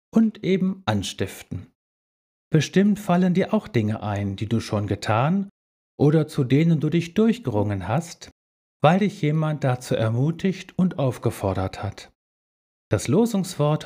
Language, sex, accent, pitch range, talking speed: German, male, German, 110-165 Hz, 130 wpm